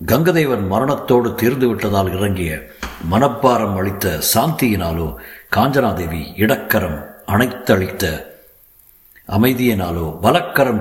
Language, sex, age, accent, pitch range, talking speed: Tamil, male, 50-69, native, 90-115 Hz, 70 wpm